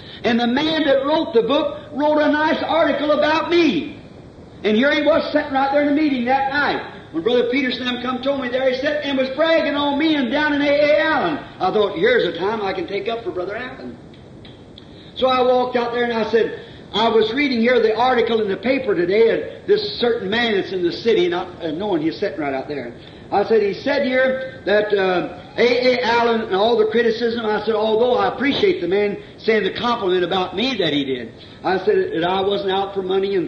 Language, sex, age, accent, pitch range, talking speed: English, male, 50-69, American, 210-290 Hz, 230 wpm